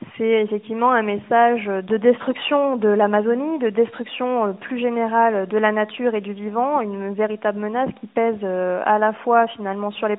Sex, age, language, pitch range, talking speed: female, 20-39, French, 205-235 Hz, 170 wpm